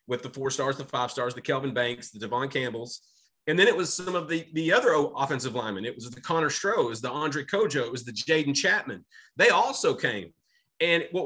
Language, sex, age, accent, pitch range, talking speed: English, male, 30-49, American, 120-155 Hz, 235 wpm